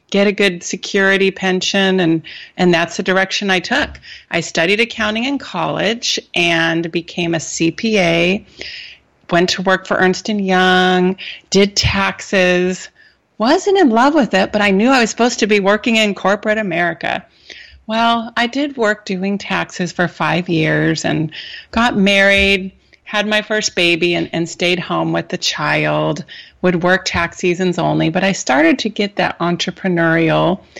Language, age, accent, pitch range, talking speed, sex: English, 30-49, American, 170-215 Hz, 160 wpm, female